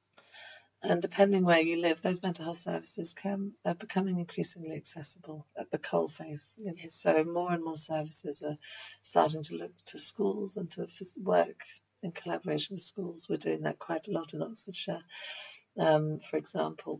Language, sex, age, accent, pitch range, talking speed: English, female, 40-59, British, 145-195 Hz, 160 wpm